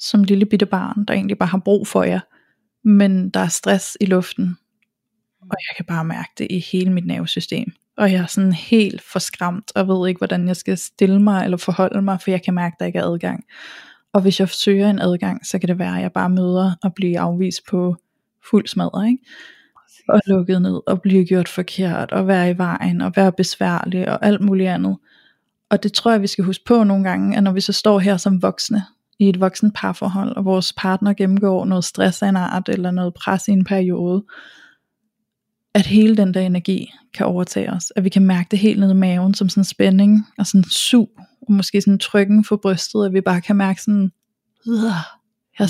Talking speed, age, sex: 215 wpm, 20-39, female